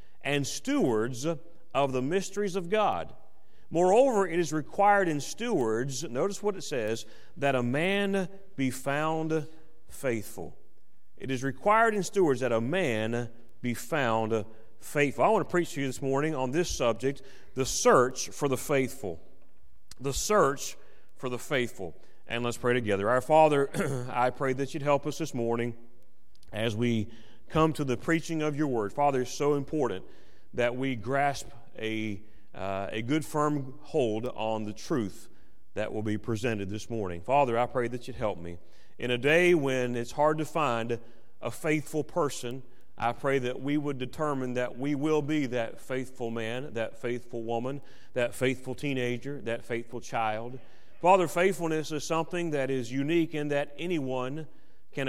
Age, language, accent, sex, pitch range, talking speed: 40-59, English, American, male, 120-155 Hz, 165 wpm